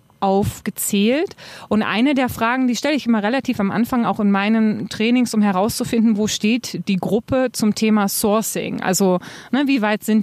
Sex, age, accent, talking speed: female, 30-49, German, 175 wpm